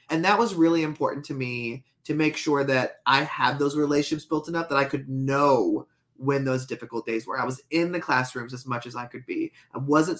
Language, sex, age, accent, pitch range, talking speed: English, male, 30-49, American, 130-160 Hz, 230 wpm